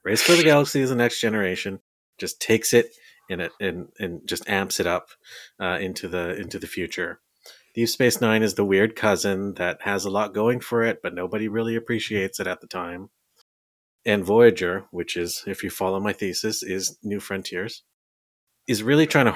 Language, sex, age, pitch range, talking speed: English, male, 30-49, 90-115 Hz, 200 wpm